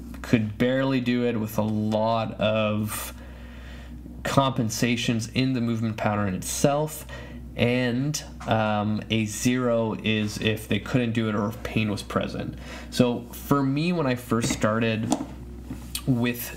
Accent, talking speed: American, 135 wpm